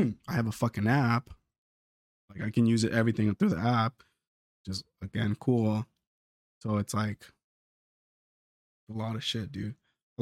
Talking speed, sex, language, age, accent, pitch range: 155 wpm, male, English, 20-39, American, 105-125 Hz